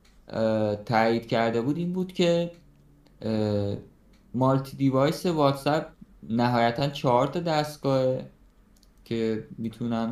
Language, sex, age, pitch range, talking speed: Persian, male, 20-39, 110-140 Hz, 90 wpm